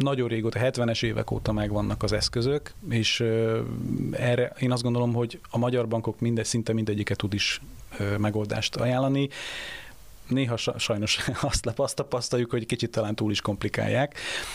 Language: Hungarian